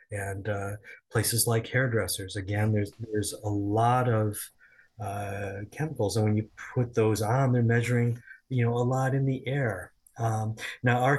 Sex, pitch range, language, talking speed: male, 105-125 Hz, English, 165 wpm